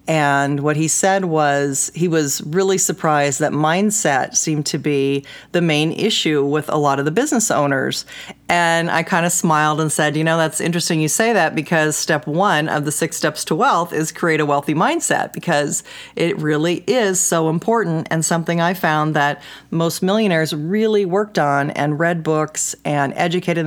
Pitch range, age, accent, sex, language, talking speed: 155-205 Hz, 40-59, American, female, English, 185 wpm